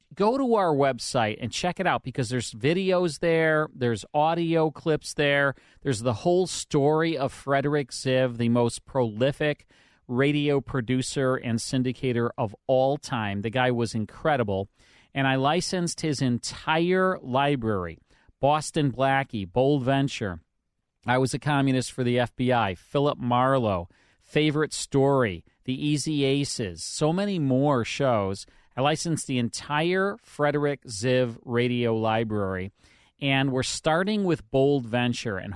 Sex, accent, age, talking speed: male, American, 40-59, 135 wpm